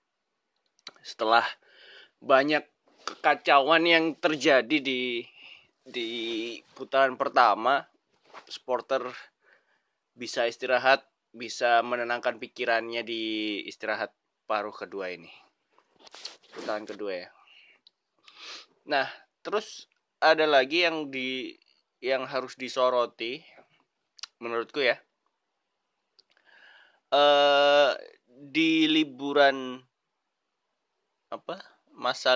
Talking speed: 70 wpm